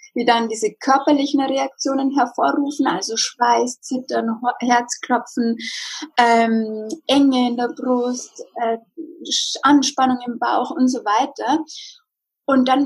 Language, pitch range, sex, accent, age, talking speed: German, 230-285 Hz, female, German, 20-39, 110 wpm